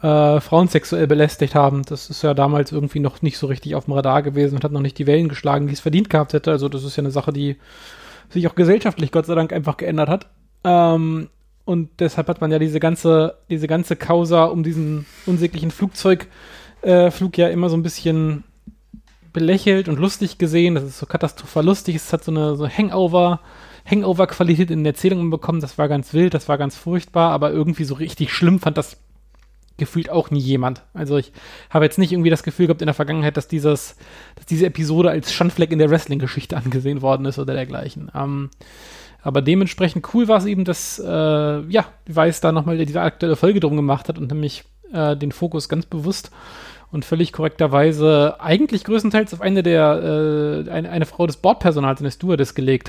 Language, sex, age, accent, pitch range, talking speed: German, male, 30-49, German, 145-175 Hz, 205 wpm